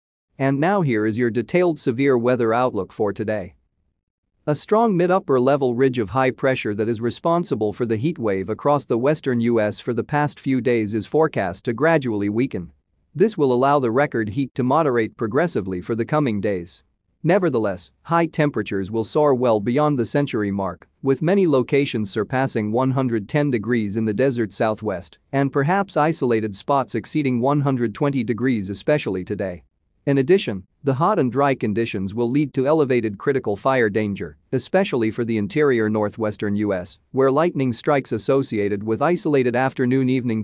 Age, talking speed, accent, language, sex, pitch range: 40-59, 160 wpm, American, English, male, 105-140 Hz